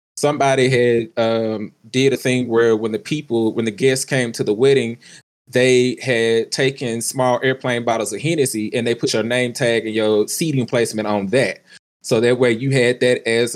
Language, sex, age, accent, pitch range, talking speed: English, male, 20-39, American, 115-140 Hz, 195 wpm